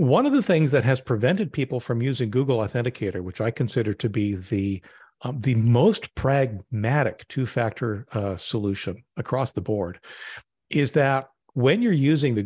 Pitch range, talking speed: 105-130 Hz, 165 wpm